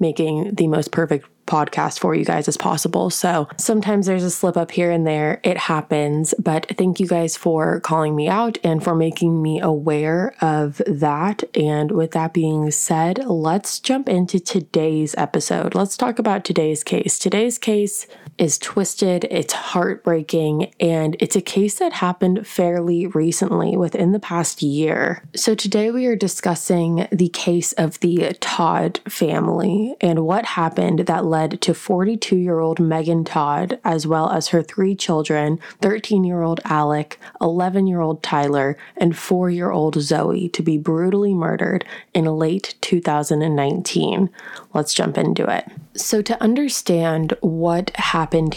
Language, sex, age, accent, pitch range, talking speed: English, female, 20-39, American, 160-195 Hz, 145 wpm